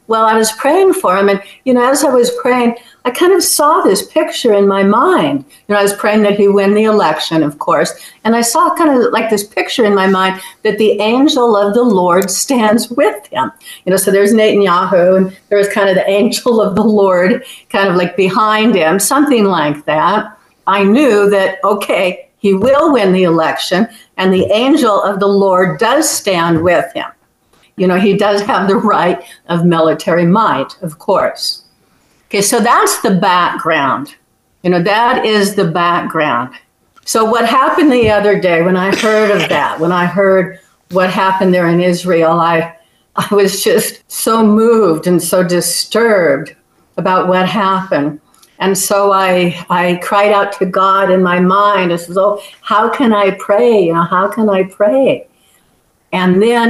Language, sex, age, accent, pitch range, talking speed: English, female, 60-79, American, 185-225 Hz, 185 wpm